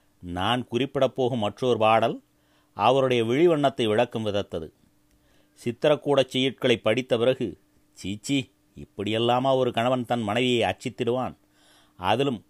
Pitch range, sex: 110-130 Hz, male